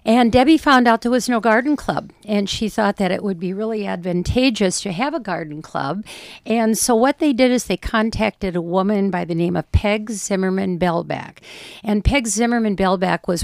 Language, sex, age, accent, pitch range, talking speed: English, female, 60-79, American, 170-220 Hz, 190 wpm